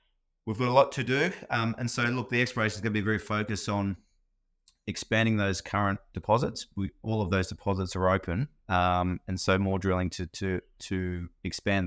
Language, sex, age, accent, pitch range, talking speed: English, male, 30-49, Australian, 90-105 Hz, 195 wpm